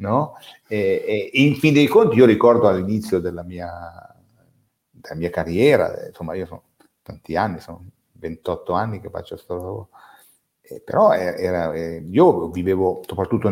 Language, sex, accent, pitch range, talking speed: Italian, male, native, 90-150 Hz, 155 wpm